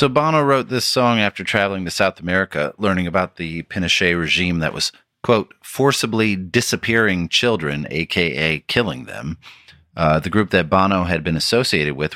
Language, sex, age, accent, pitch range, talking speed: English, male, 30-49, American, 80-100 Hz, 165 wpm